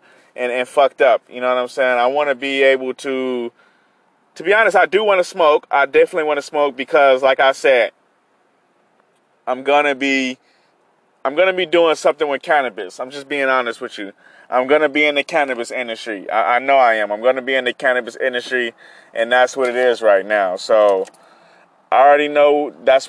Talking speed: 205 wpm